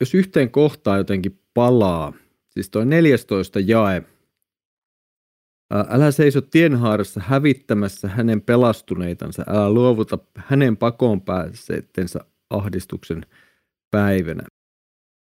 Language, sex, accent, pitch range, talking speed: Finnish, male, native, 105-135 Hz, 85 wpm